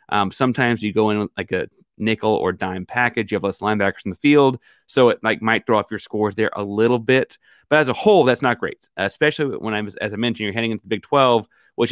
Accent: American